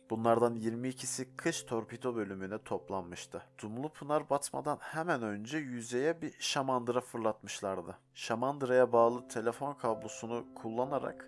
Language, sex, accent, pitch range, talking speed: Turkish, male, native, 110-135 Hz, 105 wpm